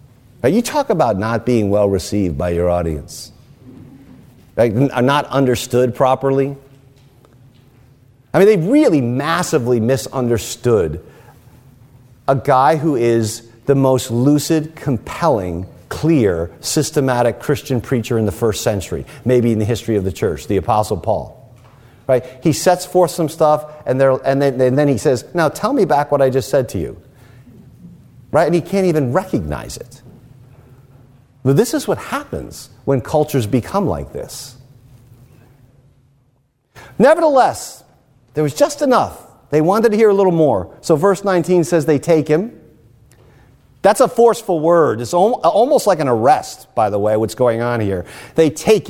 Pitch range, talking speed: 120-150 Hz, 155 wpm